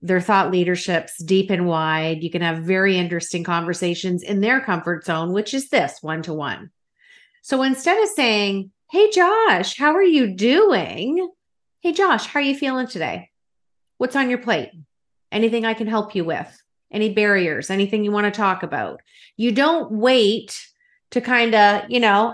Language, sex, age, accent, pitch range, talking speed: English, female, 30-49, American, 195-260 Hz, 170 wpm